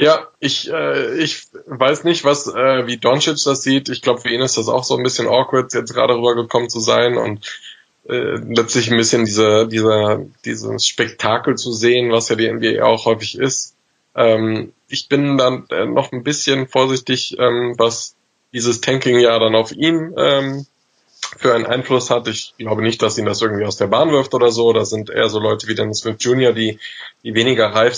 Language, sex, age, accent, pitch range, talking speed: German, male, 20-39, German, 110-120 Hz, 200 wpm